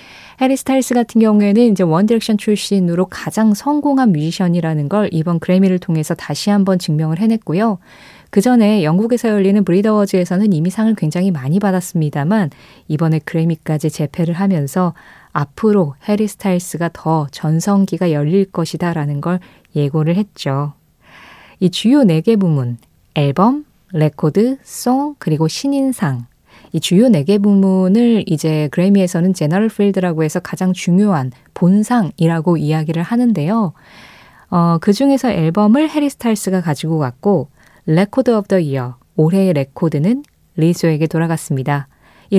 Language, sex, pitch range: Korean, female, 160-215 Hz